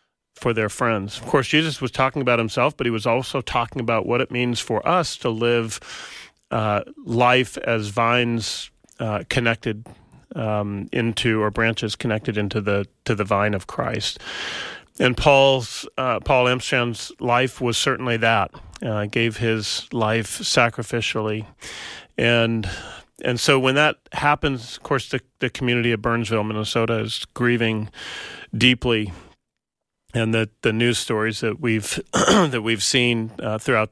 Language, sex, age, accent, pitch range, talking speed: English, male, 40-59, American, 110-125 Hz, 150 wpm